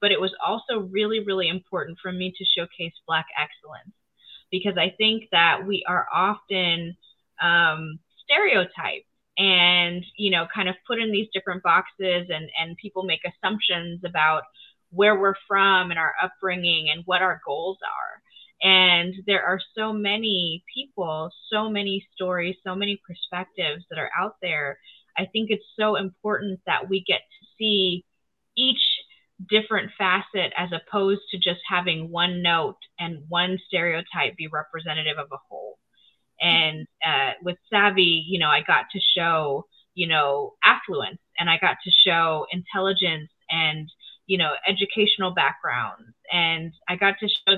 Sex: female